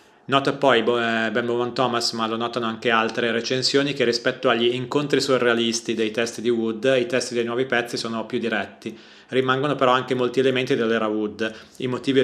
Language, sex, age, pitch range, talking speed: Italian, male, 30-49, 115-130 Hz, 185 wpm